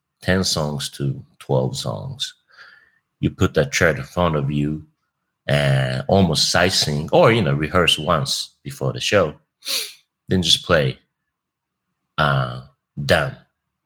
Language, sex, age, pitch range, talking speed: English, male, 30-49, 70-100 Hz, 130 wpm